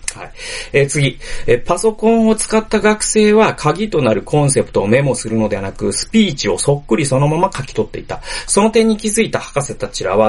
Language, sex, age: Japanese, male, 30-49